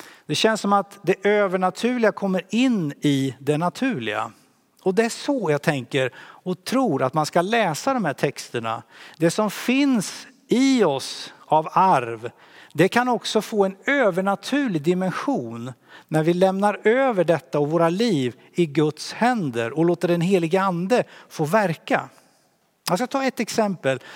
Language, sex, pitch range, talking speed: Swedish, male, 145-200 Hz, 155 wpm